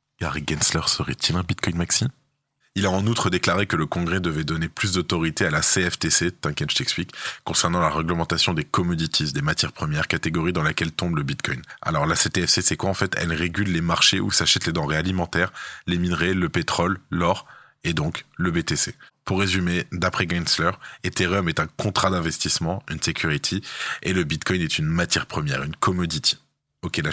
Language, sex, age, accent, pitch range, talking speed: French, male, 20-39, French, 80-95 Hz, 190 wpm